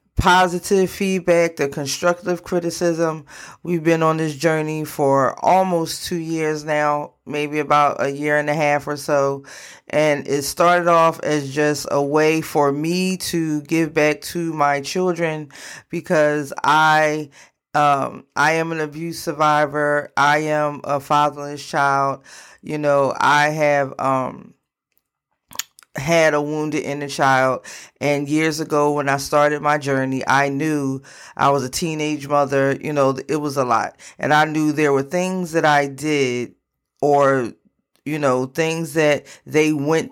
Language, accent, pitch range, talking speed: English, American, 140-160 Hz, 150 wpm